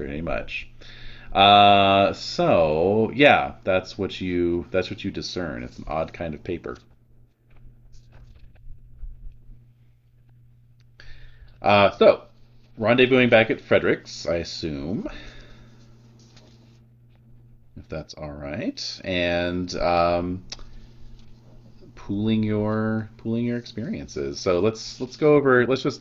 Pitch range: 95-120 Hz